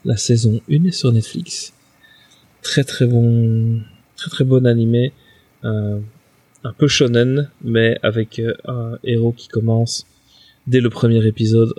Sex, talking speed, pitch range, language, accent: male, 135 wpm, 115-130 Hz, French, French